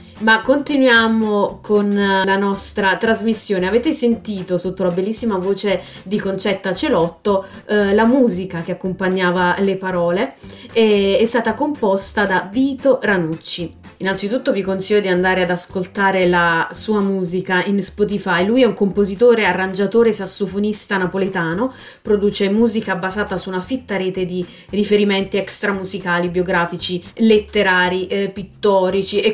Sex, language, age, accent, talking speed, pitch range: female, Italian, 30-49, native, 130 wpm, 185-215 Hz